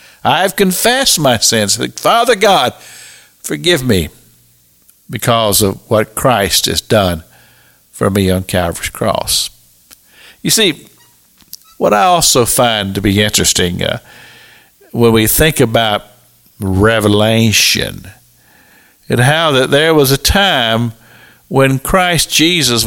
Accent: American